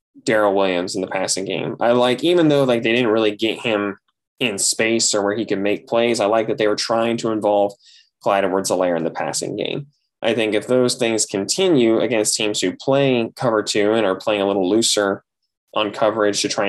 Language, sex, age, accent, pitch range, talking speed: English, male, 10-29, American, 100-130 Hz, 220 wpm